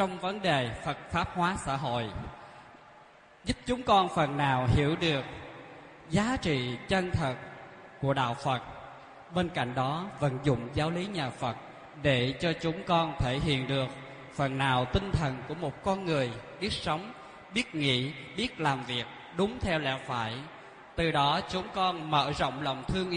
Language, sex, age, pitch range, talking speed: Vietnamese, male, 20-39, 135-180 Hz, 170 wpm